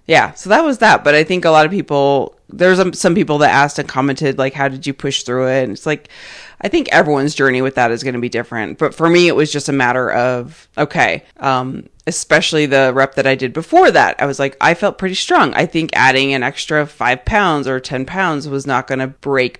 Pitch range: 130-155 Hz